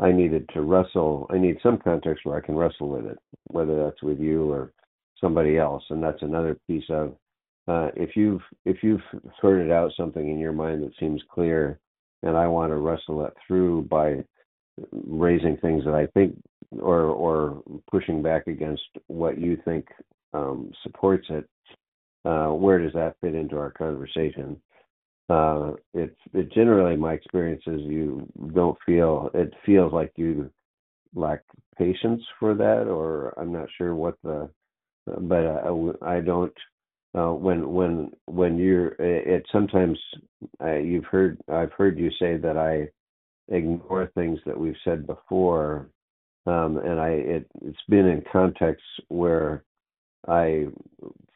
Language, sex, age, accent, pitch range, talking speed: English, male, 50-69, American, 75-90 Hz, 155 wpm